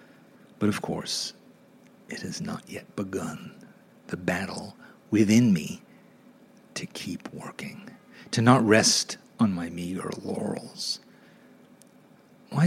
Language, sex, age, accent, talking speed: English, male, 40-59, American, 110 wpm